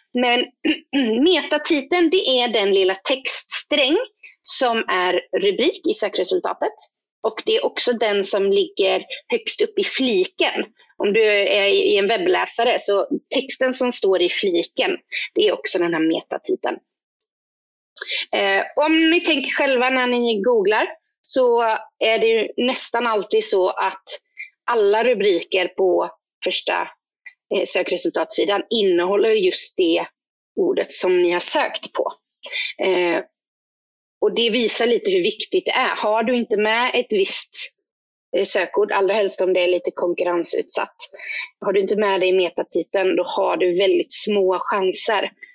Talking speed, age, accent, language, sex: 135 wpm, 30-49, native, Swedish, female